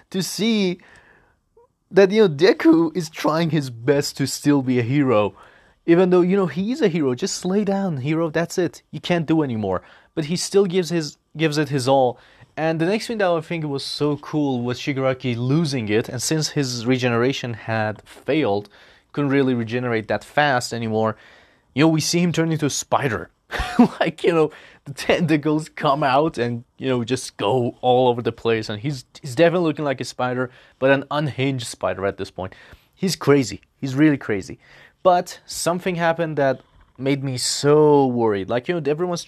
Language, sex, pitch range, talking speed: English, male, 125-160 Hz, 190 wpm